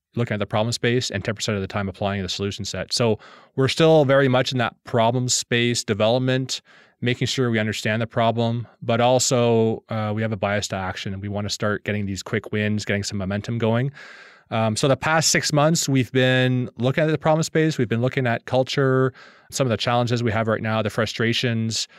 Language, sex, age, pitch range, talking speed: English, male, 20-39, 105-125 Hz, 220 wpm